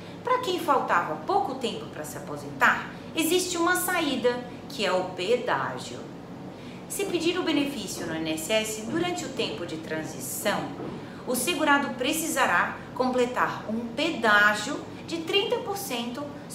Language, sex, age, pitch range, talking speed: Portuguese, female, 30-49, 220-315 Hz, 125 wpm